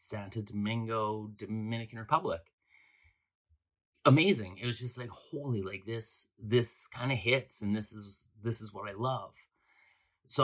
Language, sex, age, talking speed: English, male, 30-49, 145 wpm